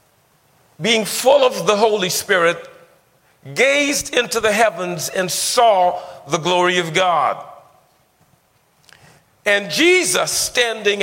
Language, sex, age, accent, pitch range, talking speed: English, male, 50-69, American, 150-210 Hz, 105 wpm